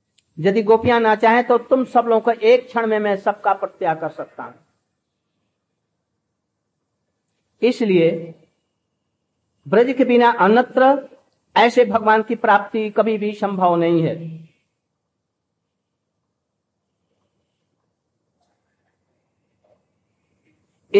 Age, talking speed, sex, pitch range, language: 50-69, 90 wpm, male, 165-230 Hz, Hindi